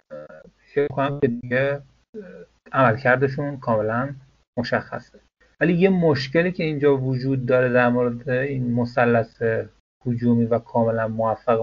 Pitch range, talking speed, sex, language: 115-140 Hz, 110 wpm, male, Persian